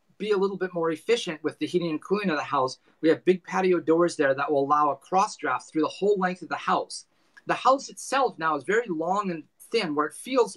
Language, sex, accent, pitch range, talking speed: English, male, American, 140-175 Hz, 255 wpm